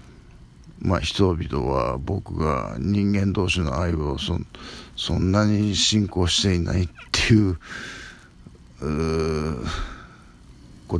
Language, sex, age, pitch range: Japanese, male, 50-69, 75-100 Hz